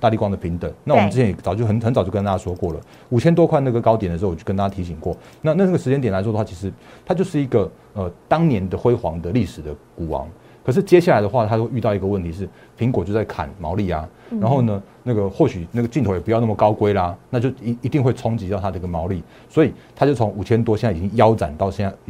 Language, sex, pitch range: Chinese, male, 95-125 Hz